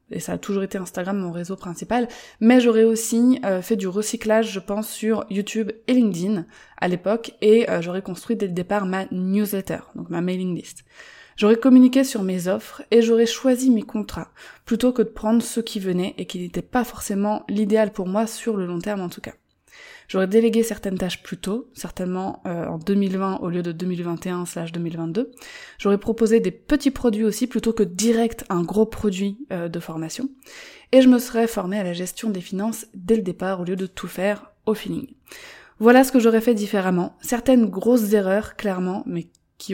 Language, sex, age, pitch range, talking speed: French, female, 20-39, 190-230 Hz, 195 wpm